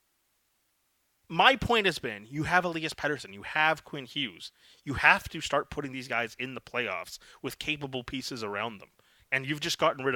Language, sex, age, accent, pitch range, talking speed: English, male, 30-49, American, 140-190 Hz, 190 wpm